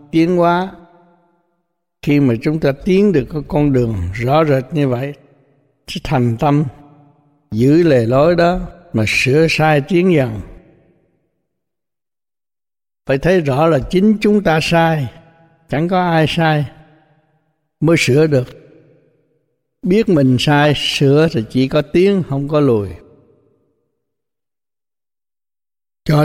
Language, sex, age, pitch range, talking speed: Vietnamese, male, 60-79, 140-165 Hz, 125 wpm